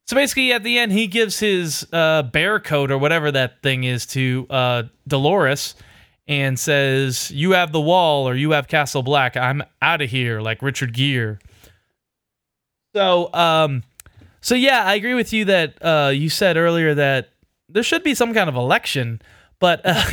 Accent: American